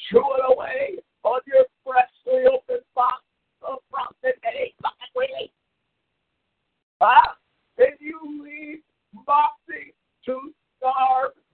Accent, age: American, 50-69